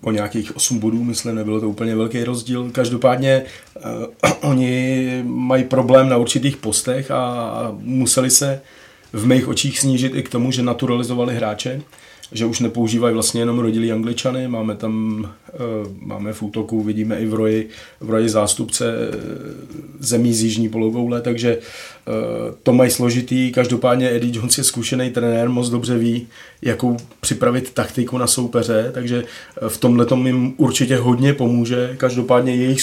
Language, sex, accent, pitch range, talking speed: Czech, male, native, 115-125 Hz, 150 wpm